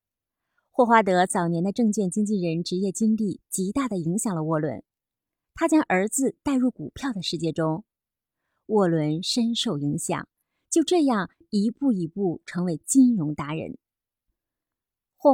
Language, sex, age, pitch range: Chinese, female, 30-49, 170-235 Hz